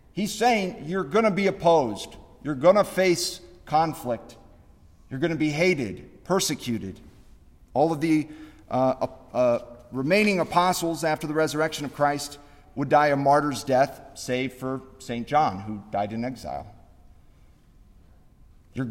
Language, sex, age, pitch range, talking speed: English, male, 50-69, 125-175 Hz, 140 wpm